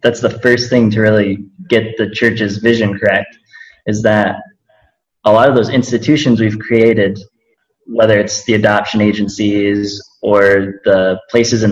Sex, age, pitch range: male, 20-39, 100-115 Hz